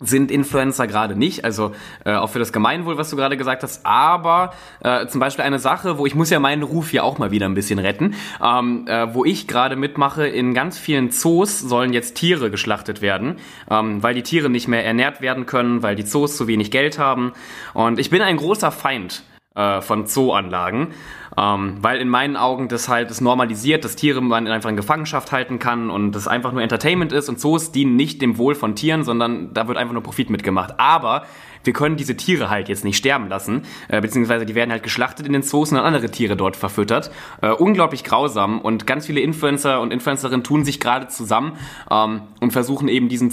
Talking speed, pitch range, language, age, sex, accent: 215 wpm, 115-145 Hz, German, 20-39, male, German